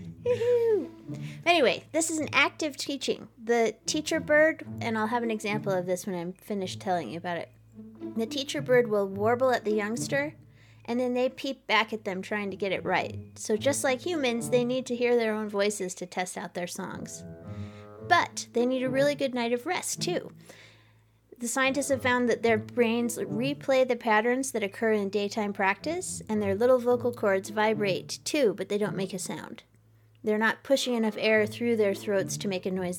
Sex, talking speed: female, 200 wpm